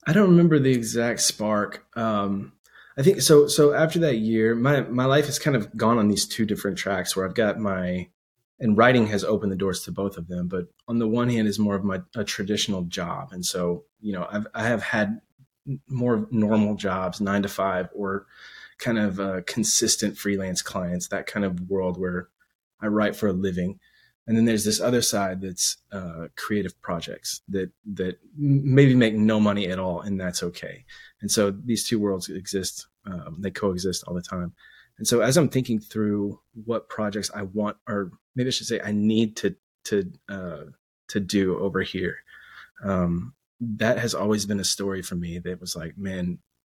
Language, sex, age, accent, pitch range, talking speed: English, male, 20-39, American, 95-115 Hz, 195 wpm